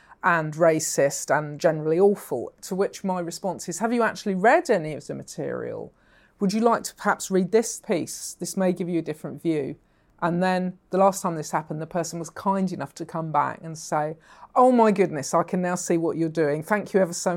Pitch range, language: 165-205 Hz, English